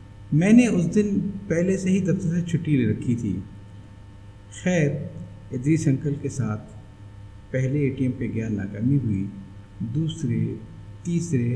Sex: male